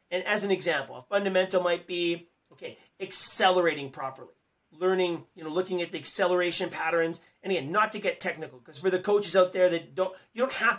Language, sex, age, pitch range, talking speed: English, male, 40-59, 160-195 Hz, 200 wpm